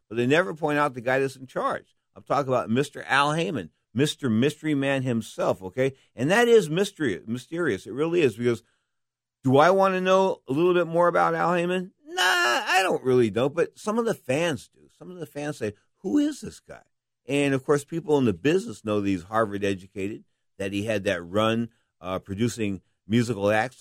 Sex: male